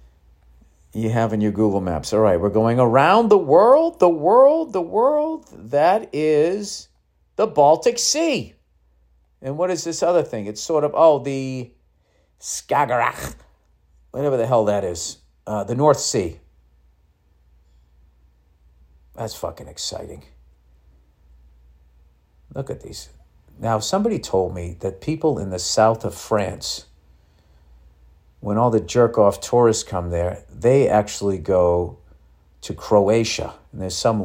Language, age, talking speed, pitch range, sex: English, 50-69, 135 wpm, 70-110 Hz, male